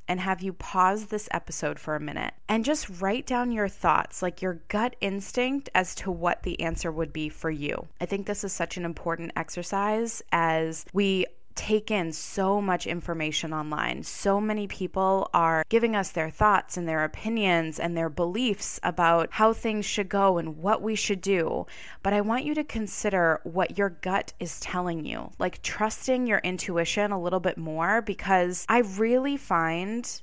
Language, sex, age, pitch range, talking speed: English, female, 20-39, 170-210 Hz, 185 wpm